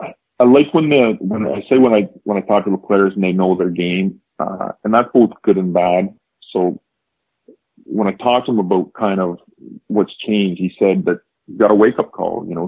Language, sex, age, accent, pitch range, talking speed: English, male, 40-59, American, 90-105 Hz, 225 wpm